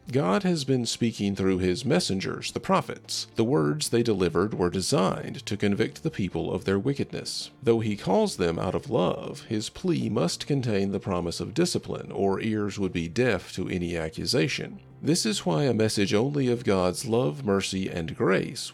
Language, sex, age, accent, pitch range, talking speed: English, male, 40-59, American, 85-115 Hz, 185 wpm